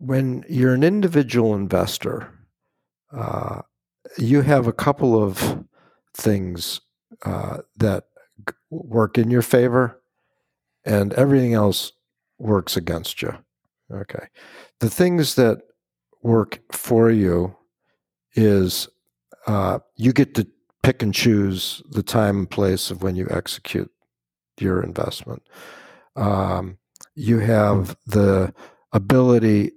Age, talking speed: 60-79, 110 wpm